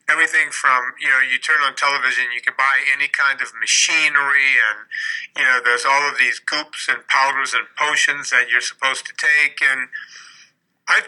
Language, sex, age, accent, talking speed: English, male, 50-69, American, 185 wpm